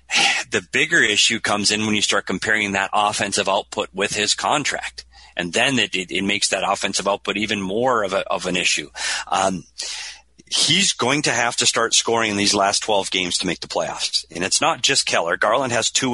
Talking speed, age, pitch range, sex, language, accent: 210 wpm, 40-59, 95-120 Hz, male, English, American